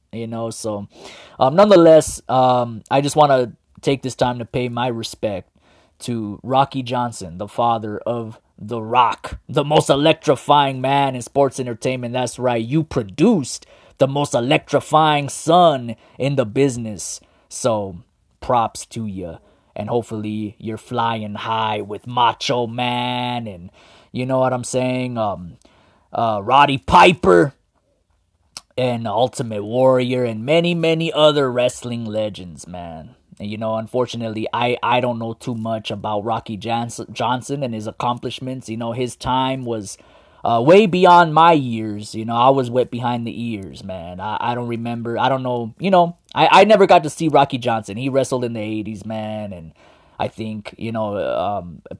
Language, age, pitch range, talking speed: English, 20-39, 110-130 Hz, 160 wpm